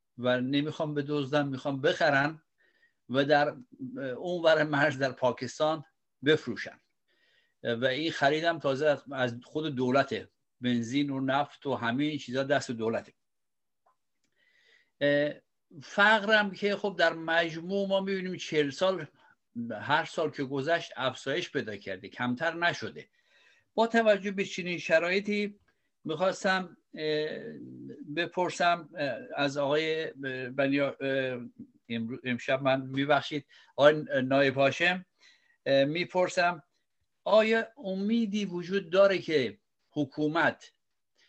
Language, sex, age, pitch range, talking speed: Persian, male, 60-79, 135-175 Hz, 100 wpm